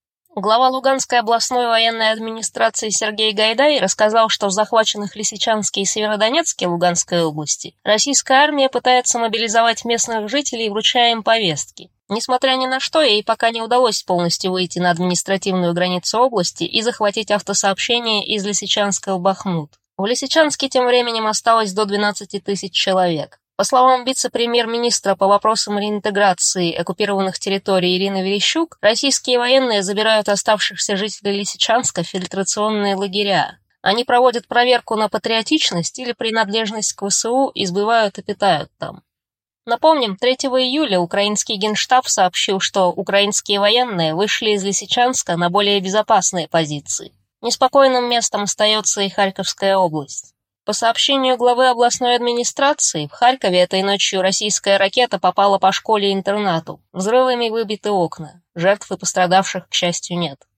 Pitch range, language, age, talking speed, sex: 195-235 Hz, Russian, 20-39, 130 wpm, female